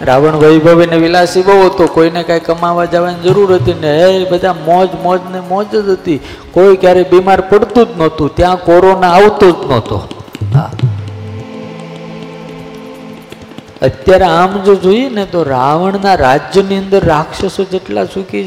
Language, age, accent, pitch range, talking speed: Gujarati, 50-69, native, 115-180 Hz, 80 wpm